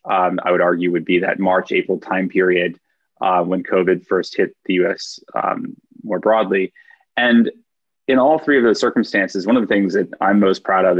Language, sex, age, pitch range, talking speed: English, male, 20-39, 95-115 Hz, 195 wpm